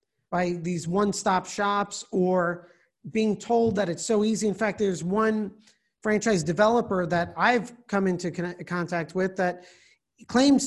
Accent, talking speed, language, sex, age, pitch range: American, 140 wpm, English, male, 40-59, 180-230 Hz